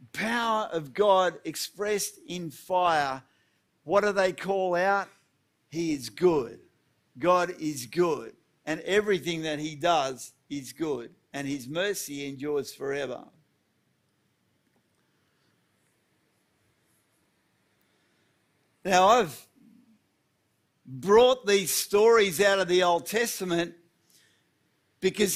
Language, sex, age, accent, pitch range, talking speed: English, male, 50-69, Australian, 165-210 Hz, 95 wpm